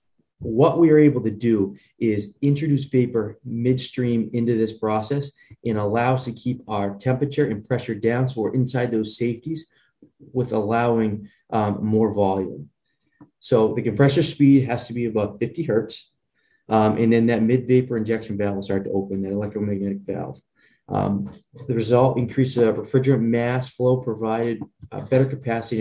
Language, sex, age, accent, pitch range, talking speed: English, male, 20-39, American, 110-125 Hz, 160 wpm